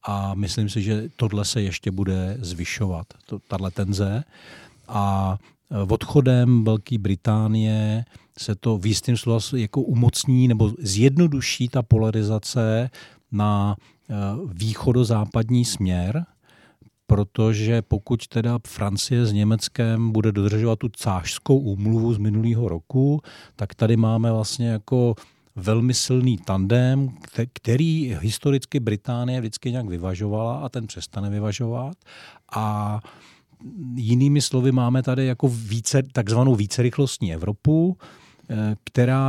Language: Czech